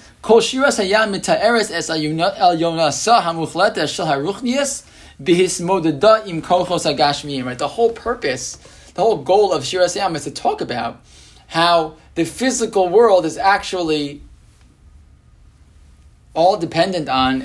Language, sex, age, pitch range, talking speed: English, male, 20-39, 160-225 Hz, 80 wpm